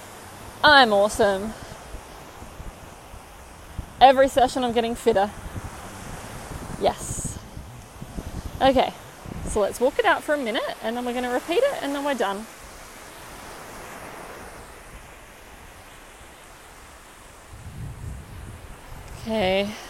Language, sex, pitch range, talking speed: English, female, 200-275 Hz, 85 wpm